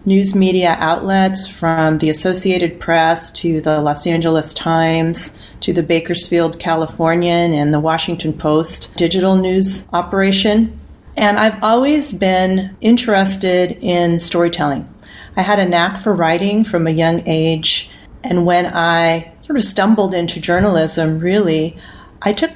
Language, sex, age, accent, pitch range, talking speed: English, female, 40-59, American, 160-190 Hz, 135 wpm